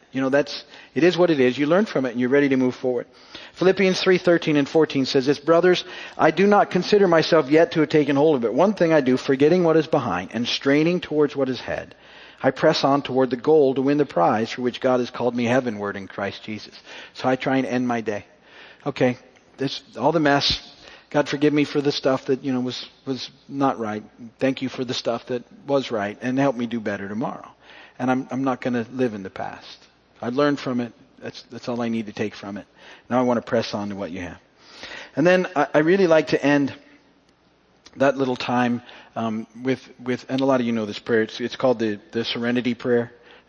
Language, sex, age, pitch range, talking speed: English, male, 50-69, 115-140 Hz, 240 wpm